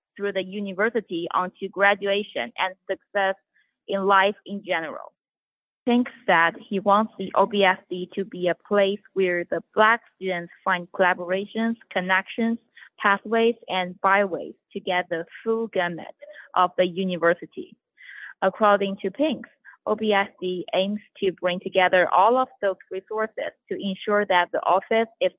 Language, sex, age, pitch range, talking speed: English, female, 20-39, 180-210 Hz, 135 wpm